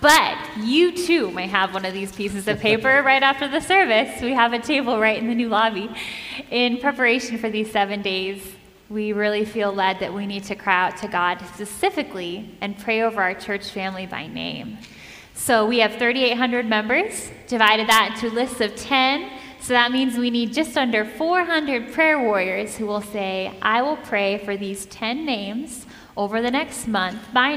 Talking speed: 190 wpm